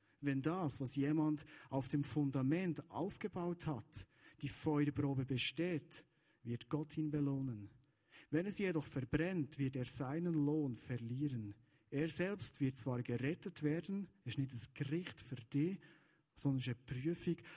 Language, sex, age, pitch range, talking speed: German, male, 50-69, 125-165 Hz, 140 wpm